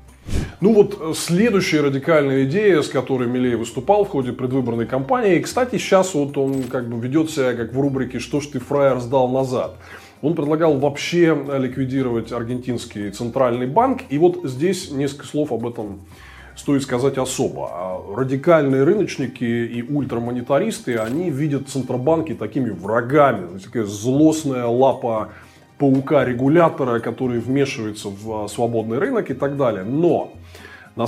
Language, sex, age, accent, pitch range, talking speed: Russian, male, 20-39, native, 120-145 Hz, 135 wpm